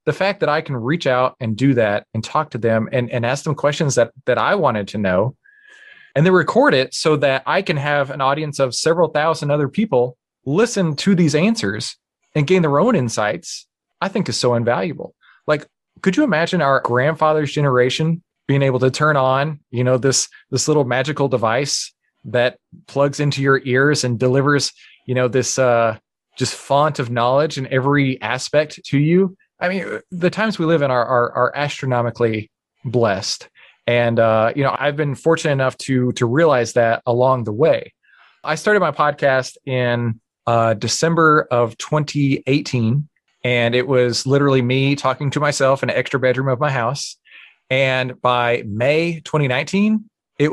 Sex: male